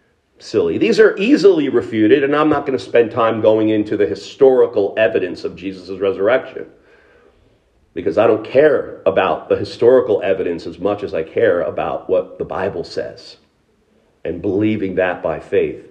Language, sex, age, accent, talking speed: English, male, 50-69, American, 160 wpm